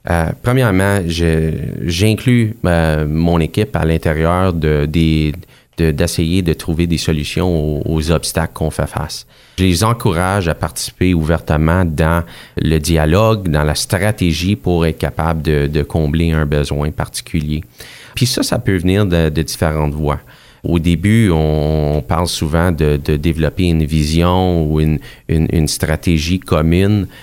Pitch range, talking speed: 75-90 Hz, 150 wpm